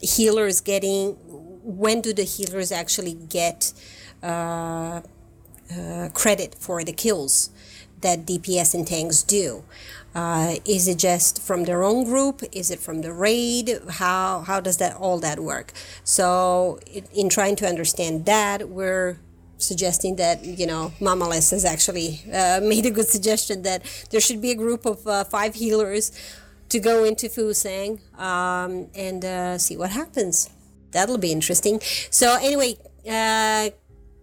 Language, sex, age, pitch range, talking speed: English, female, 30-49, 175-215 Hz, 150 wpm